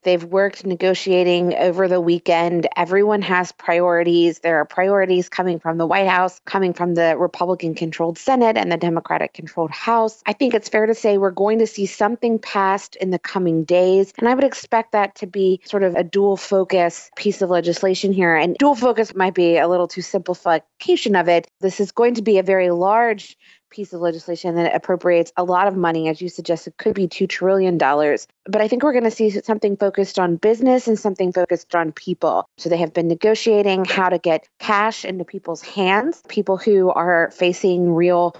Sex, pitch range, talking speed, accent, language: female, 175-210 Hz, 200 wpm, American, English